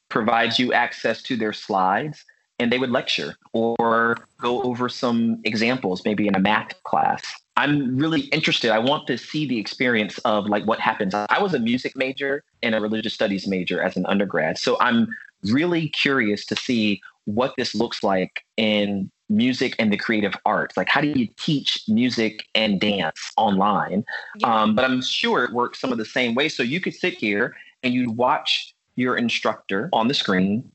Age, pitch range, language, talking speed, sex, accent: 30-49, 110-140 Hz, English, 185 wpm, male, American